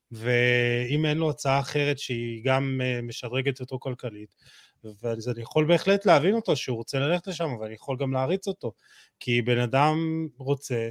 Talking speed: 165 wpm